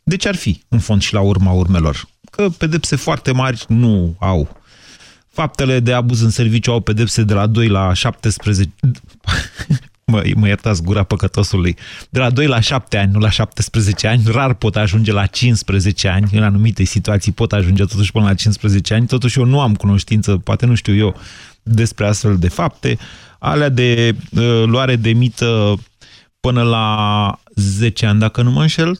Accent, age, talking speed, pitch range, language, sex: native, 30-49, 175 wpm, 100-130 Hz, Romanian, male